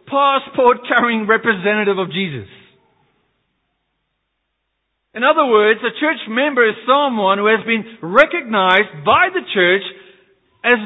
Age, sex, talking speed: 50-69, male, 110 wpm